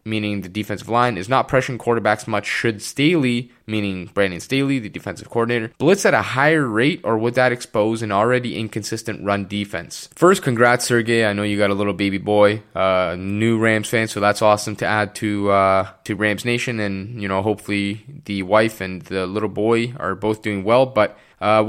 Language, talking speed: English, 200 wpm